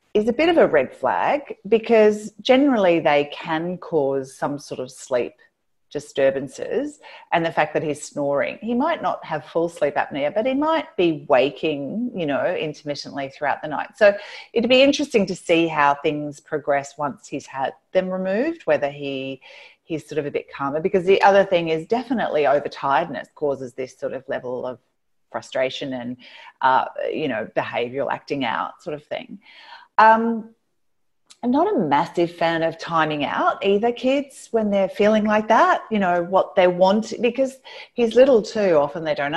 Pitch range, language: 150-225 Hz, English